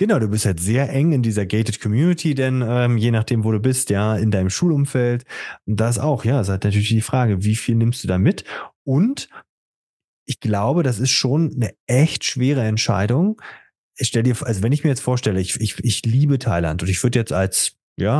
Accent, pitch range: German, 95-130 Hz